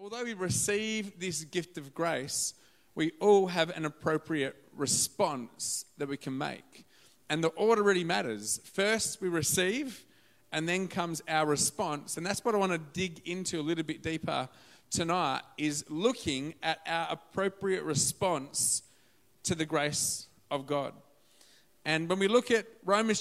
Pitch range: 150-195 Hz